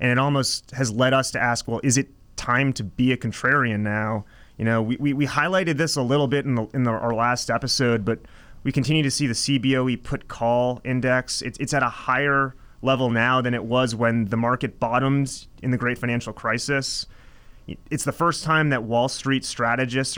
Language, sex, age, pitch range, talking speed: English, male, 30-49, 115-135 Hz, 210 wpm